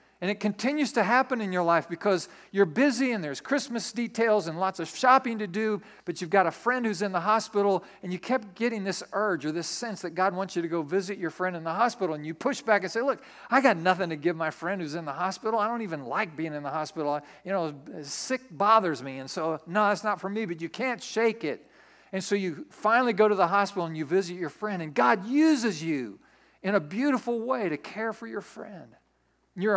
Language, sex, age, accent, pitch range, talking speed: English, male, 50-69, American, 170-220 Hz, 245 wpm